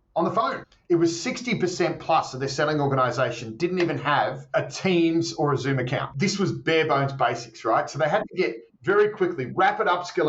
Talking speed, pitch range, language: 205 wpm, 130-170 Hz, English